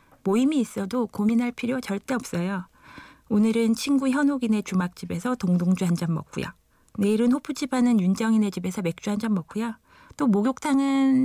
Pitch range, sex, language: 185-250 Hz, female, Korean